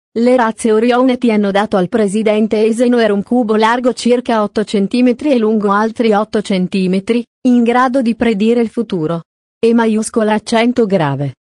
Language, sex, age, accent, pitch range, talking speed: English, female, 30-49, Italian, 205-235 Hz, 160 wpm